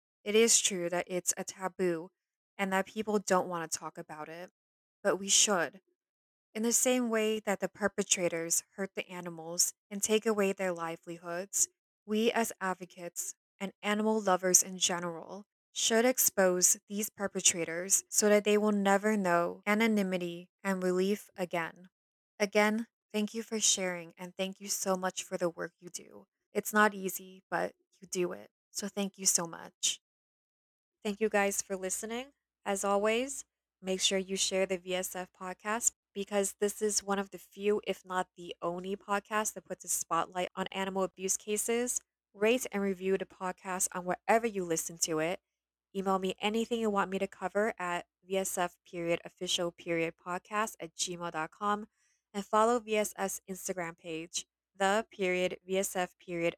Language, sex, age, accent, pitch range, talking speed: English, female, 20-39, American, 180-210 Hz, 155 wpm